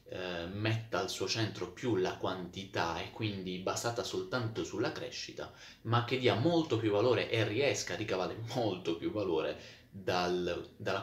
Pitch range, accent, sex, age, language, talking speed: 95-110 Hz, native, male, 20-39, Italian, 145 wpm